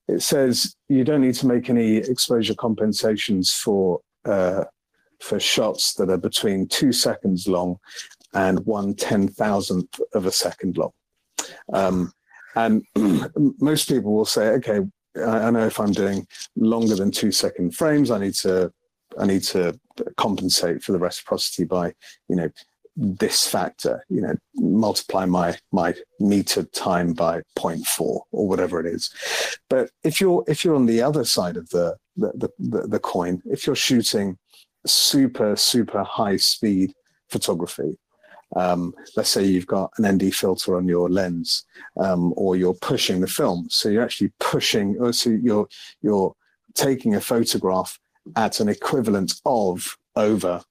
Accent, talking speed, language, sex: British, 155 wpm, English, male